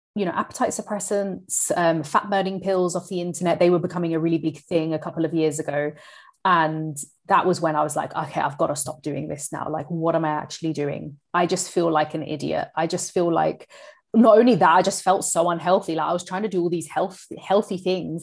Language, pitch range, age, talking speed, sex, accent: English, 160-185 Hz, 30-49, 240 wpm, female, British